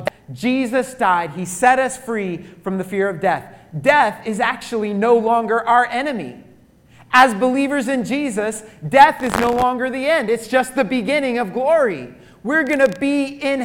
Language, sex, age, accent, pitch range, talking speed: English, male, 30-49, American, 180-255 Hz, 170 wpm